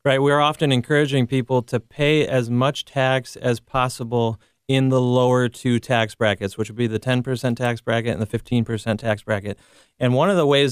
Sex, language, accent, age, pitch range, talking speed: male, English, American, 30-49, 120-145 Hz, 200 wpm